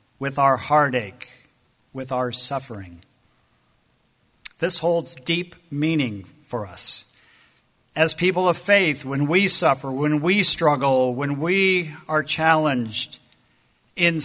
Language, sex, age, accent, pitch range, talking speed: English, male, 50-69, American, 130-170 Hz, 115 wpm